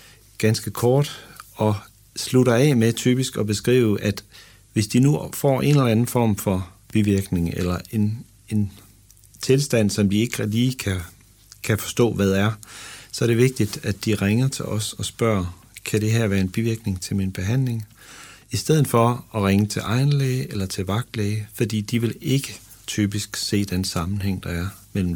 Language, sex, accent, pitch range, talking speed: Danish, male, native, 100-120 Hz, 180 wpm